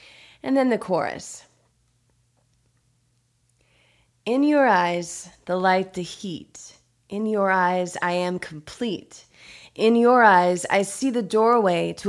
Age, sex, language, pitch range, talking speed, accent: 20-39, female, English, 170-215 Hz, 125 wpm, American